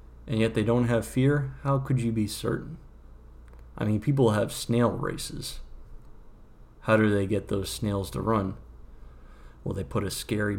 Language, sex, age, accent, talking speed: English, male, 30-49, American, 170 wpm